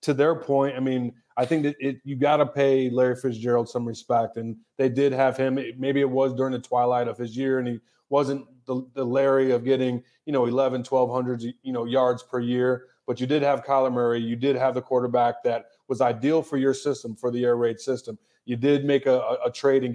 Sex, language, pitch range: male, English, 125-140 Hz